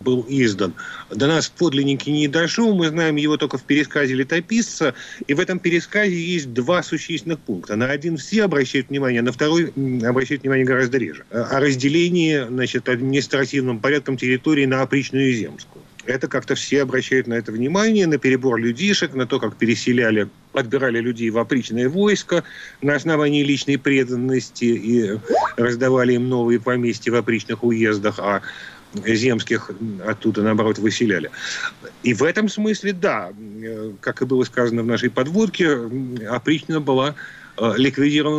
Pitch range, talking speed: 120-160 Hz, 145 wpm